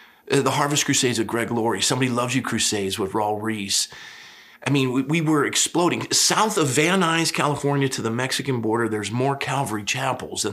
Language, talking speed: English, 190 wpm